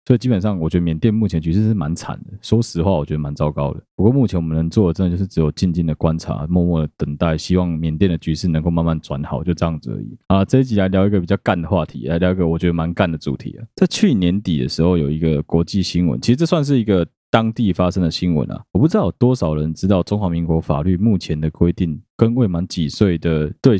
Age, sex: 20-39, male